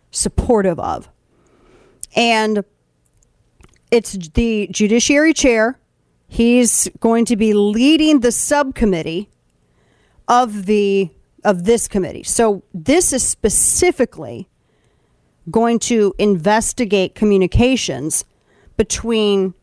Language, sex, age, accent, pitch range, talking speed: English, female, 40-59, American, 185-225 Hz, 85 wpm